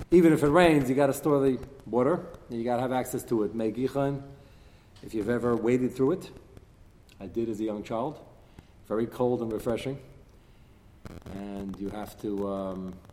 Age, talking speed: 40-59, 180 wpm